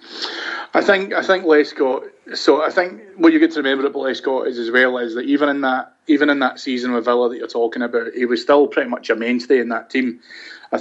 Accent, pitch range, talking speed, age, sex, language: British, 120-150 Hz, 250 wpm, 30-49, male, English